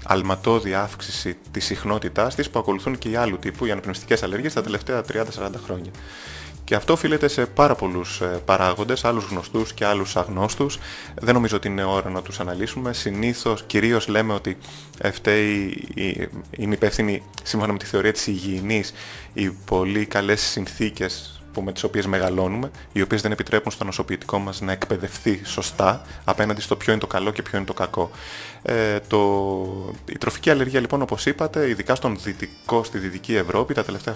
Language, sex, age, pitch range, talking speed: Greek, male, 20-39, 95-120 Hz, 170 wpm